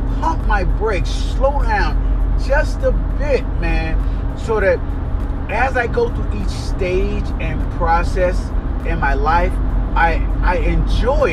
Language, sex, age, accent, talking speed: English, male, 30-49, American, 130 wpm